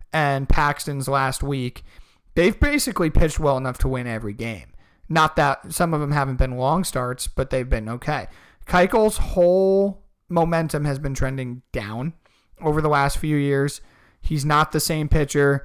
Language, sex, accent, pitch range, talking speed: English, male, American, 130-165 Hz, 165 wpm